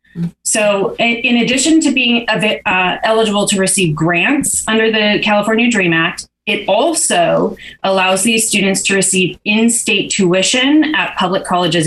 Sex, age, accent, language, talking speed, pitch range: female, 30-49, American, English, 140 wpm, 175-230 Hz